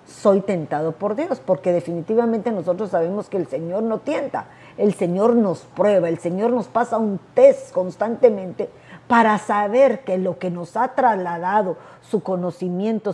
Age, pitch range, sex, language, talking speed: 50-69, 185-245 Hz, female, Spanish, 155 wpm